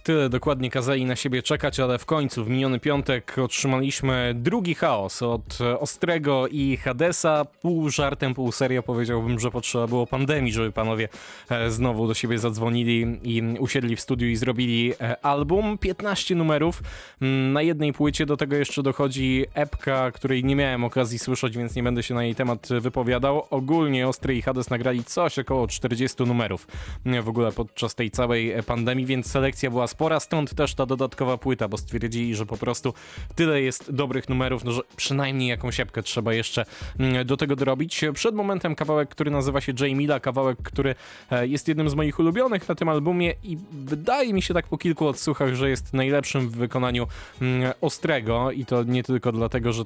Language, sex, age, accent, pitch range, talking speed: Polish, male, 20-39, native, 120-140 Hz, 175 wpm